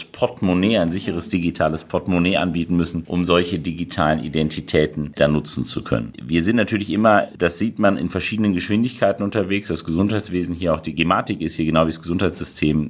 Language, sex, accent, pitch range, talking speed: German, male, German, 80-105 Hz, 175 wpm